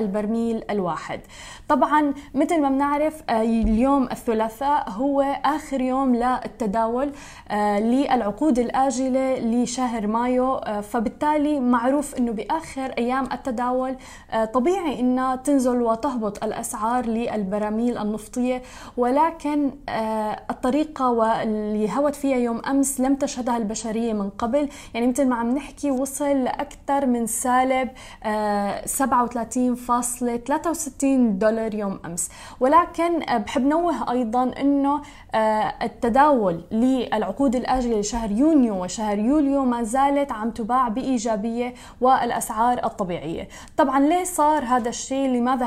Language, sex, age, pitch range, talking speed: Arabic, female, 20-39, 230-275 Hz, 105 wpm